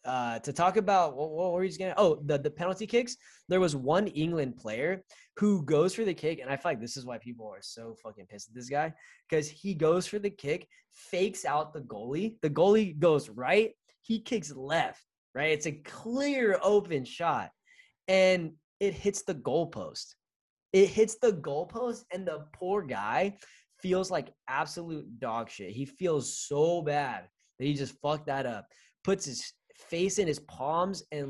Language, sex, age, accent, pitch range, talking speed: English, male, 20-39, American, 125-180 Hz, 185 wpm